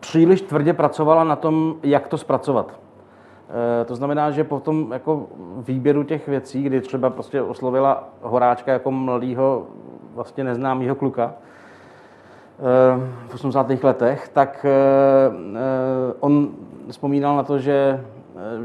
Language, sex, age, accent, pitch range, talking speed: Czech, male, 30-49, native, 125-140 Hz, 115 wpm